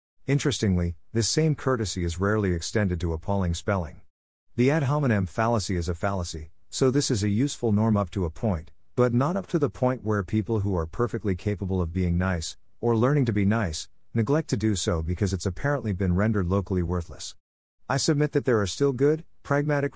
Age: 50-69